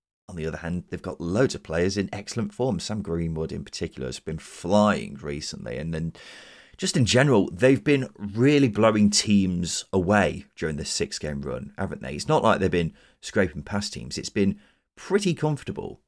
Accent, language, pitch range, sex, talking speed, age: British, English, 80-105 Hz, male, 185 wpm, 30-49